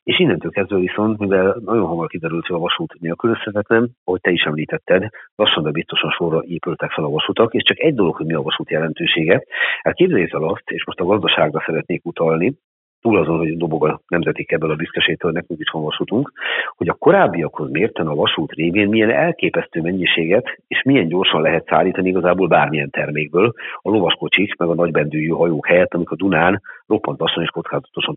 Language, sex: Hungarian, male